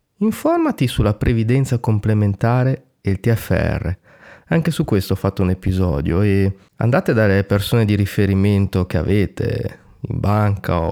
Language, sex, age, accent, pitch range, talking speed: Italian, male, 30-49, native, 100-130 Hz, 130 wpm